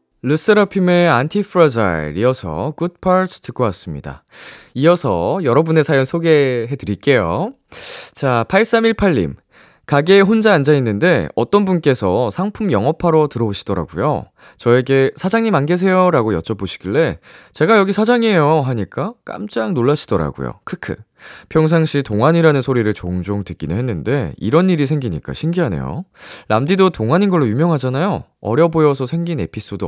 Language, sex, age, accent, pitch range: Korean, male, 20-39, native, 95-165 Hz